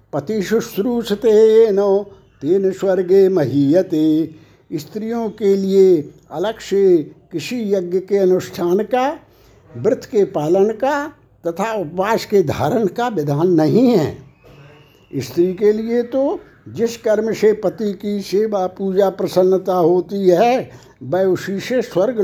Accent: native